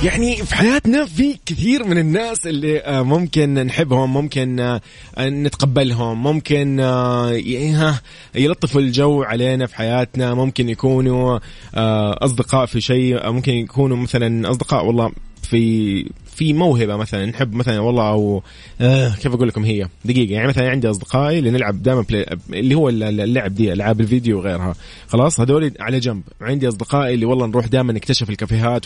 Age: 20-39